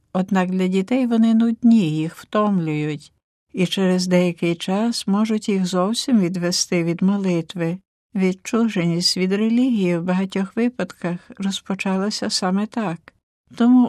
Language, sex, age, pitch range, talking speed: Ukrainian, female, 60-79, 175-215 Hz, 115 wpm